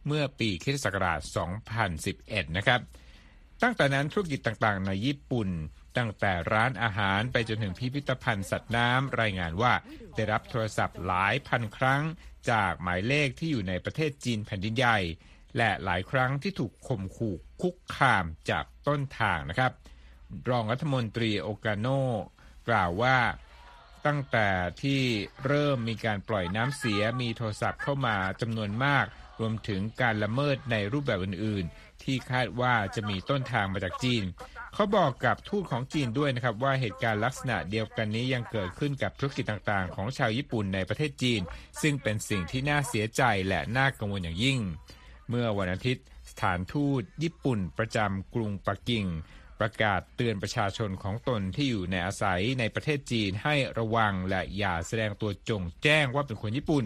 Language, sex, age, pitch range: Thai, male, 60-79, 100-130 Hz